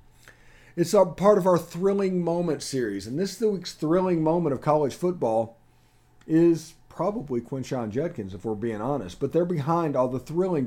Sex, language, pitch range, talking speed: male, English, 120-150 Hz, 170 wpm